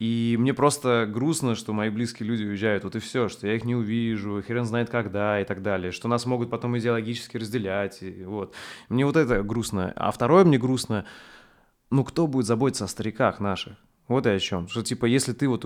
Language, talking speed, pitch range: Russian, 210 wpm, 100-125 Hz